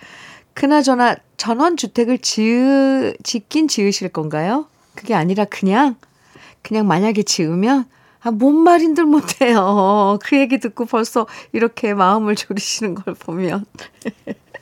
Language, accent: Korean, native